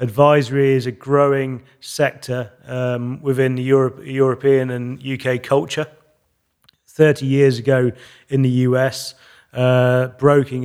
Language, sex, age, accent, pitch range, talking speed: English, male, 30-49, British, 120-135 Hz, 120 wpm